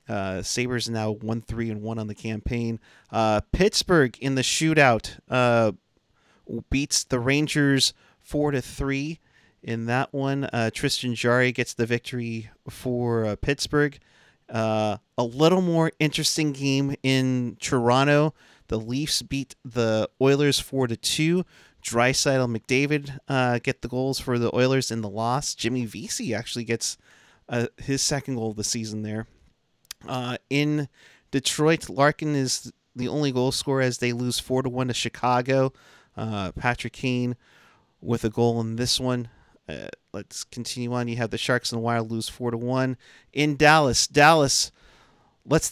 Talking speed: 150 wpm